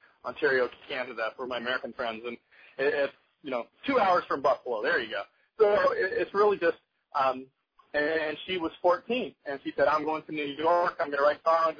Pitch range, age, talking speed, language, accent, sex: 140-175 Hz, 30-49, 200 wpm, English, American, male